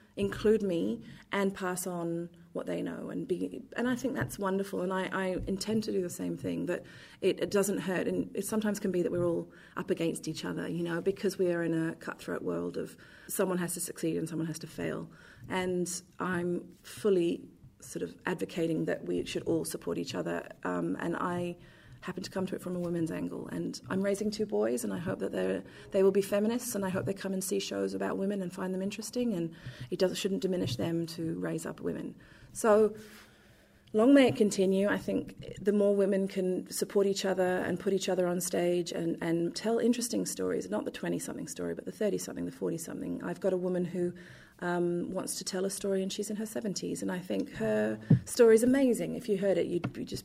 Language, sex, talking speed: English, female, 220 wpm